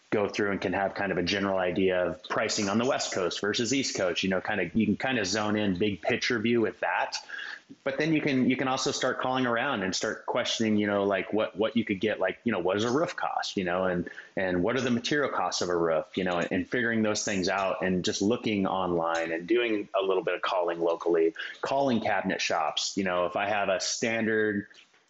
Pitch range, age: 95-115 Hz, 30-49